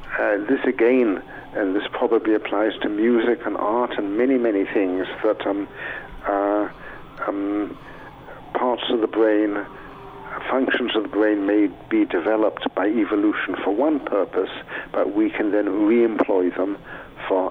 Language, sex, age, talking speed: English, male, 60-79, 145 wpm